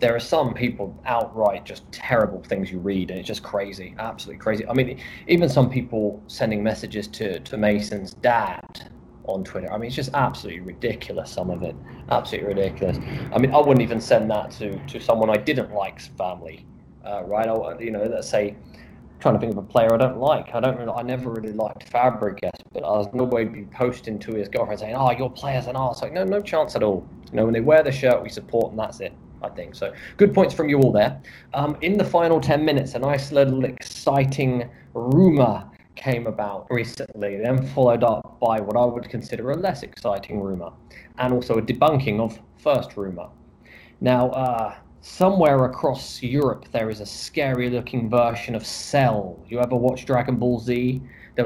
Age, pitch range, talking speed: 20-39, 105-130 Hz, 205 wpm